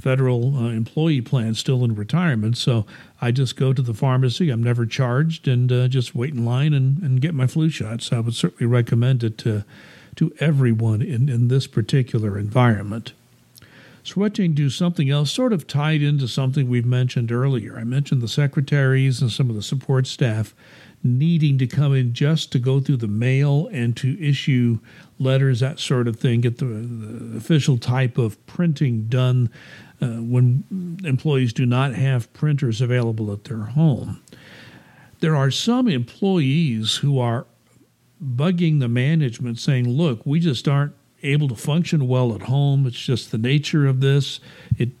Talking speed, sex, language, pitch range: 170 wpm, male, English, 120-145 Hz